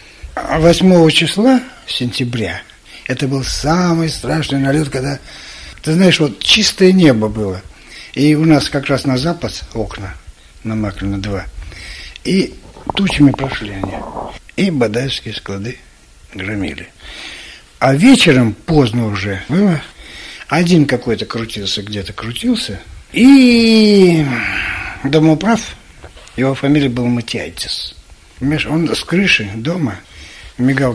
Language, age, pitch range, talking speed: Russian, 60-79, 105-155 Hz, 105 wpm